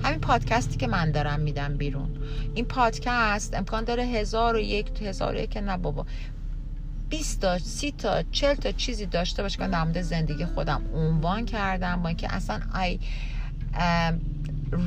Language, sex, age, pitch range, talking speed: Persian, female, 40-59, 150-190 Hz, 140 wpm